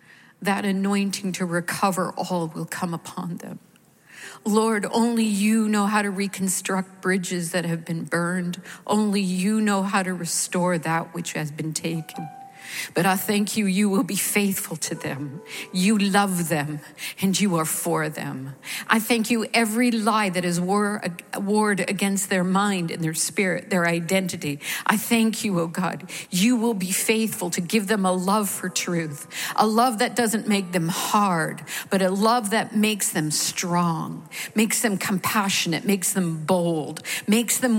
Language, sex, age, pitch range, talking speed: English, female, 50-69, 175-215 Hz, 165 wpm